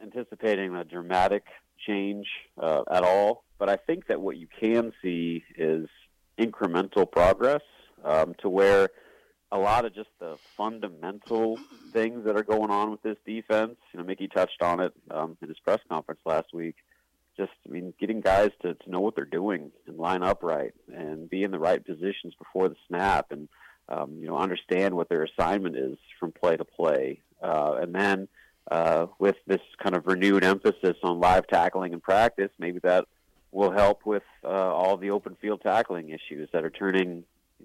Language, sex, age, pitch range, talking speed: English, male, 40-59, 90-105 Hz, 185 wpm